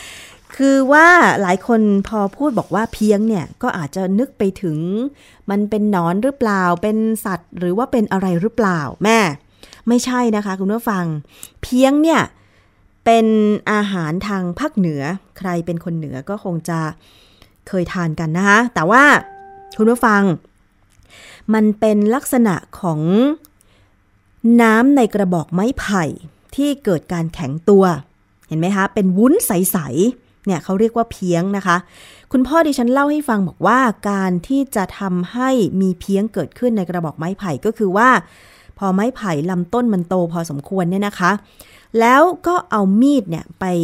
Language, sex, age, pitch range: Thai, female, 20-39, 170-230 Hz